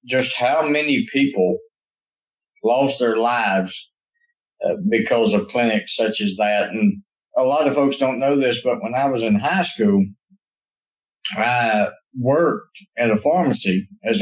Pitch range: 115-175 Hz